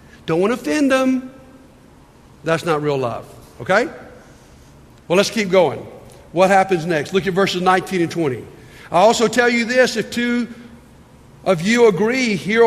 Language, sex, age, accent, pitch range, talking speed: English, male, 50-69, American, 165-230 Hz, 160 wpm